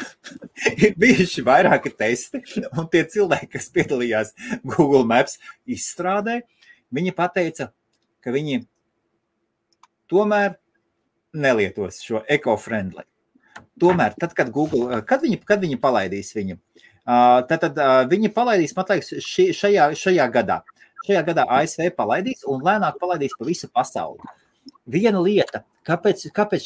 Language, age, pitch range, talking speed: English, 30-49, 125-195 Hz, 115 wpm